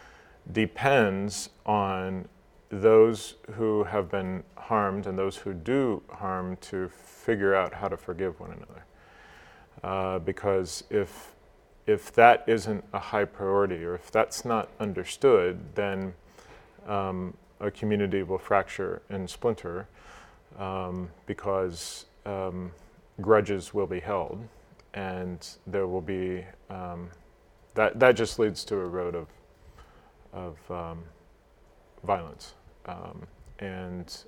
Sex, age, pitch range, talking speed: male, 40-59, 90-105 Hz, 115 wpm